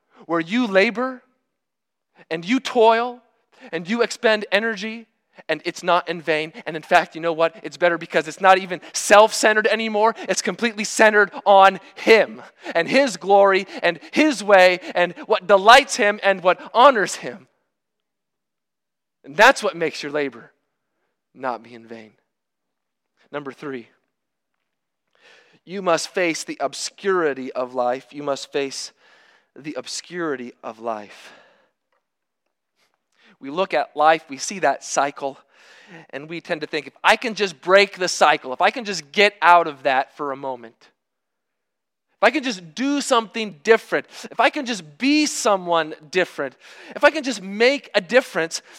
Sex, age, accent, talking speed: male, 40-59, American, 155 wpm